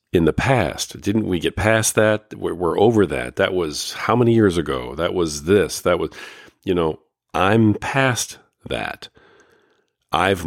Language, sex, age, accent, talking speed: English, male, 50-69, American, 165 wpm